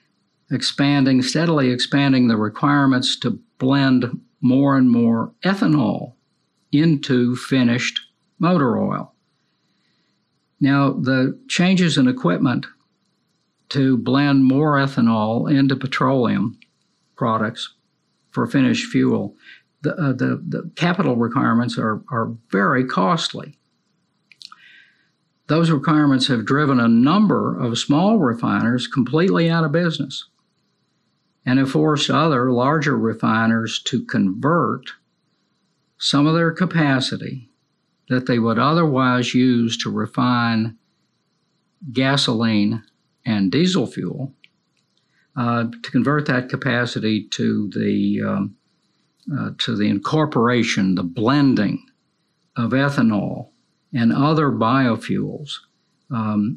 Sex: male